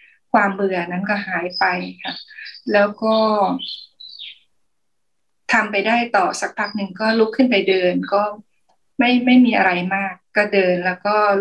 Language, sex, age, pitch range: Thai, female, 20-39, 190-240 Hz